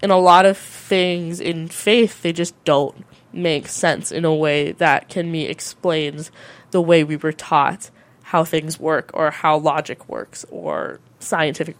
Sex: female